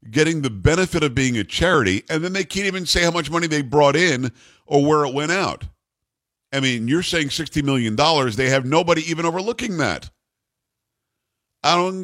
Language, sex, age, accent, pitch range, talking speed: English, male, 50-69, American, 110-155 Hz, 190 wpm